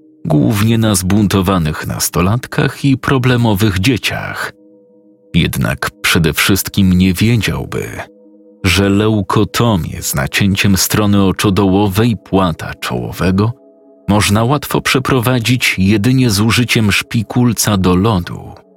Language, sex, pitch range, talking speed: Polish, male, 90-115 Hz, 95 wpm